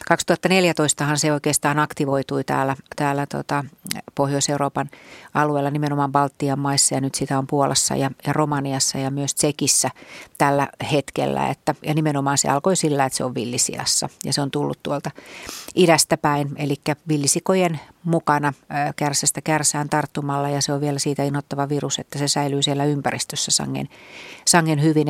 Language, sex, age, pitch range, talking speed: Finnish, female, 40-59, 140-150 Hz, 150 wpm